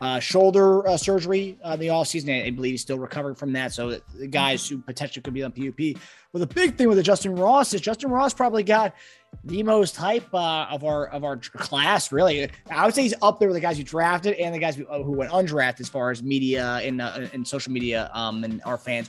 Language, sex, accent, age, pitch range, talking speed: English, male, American, 20-39, 125-165 Hz, 260 wpm